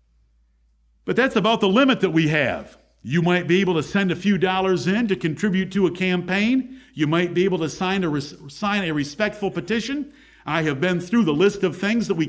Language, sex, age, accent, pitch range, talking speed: English, male, 50-69, American, 155-200 Hz, 210 wpm